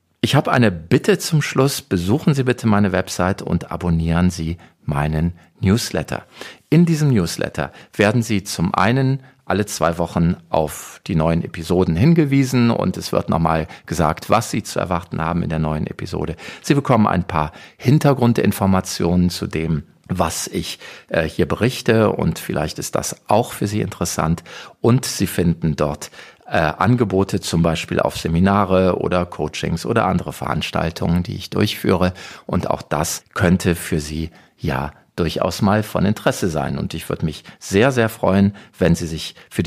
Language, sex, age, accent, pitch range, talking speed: German, male, 50-69, German, 85-115 Hz, 160 wpm